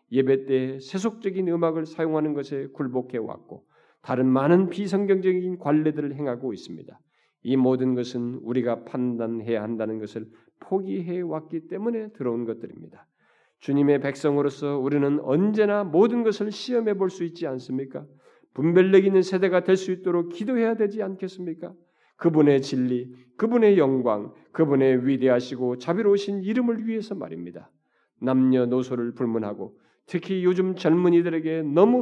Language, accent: Korean, native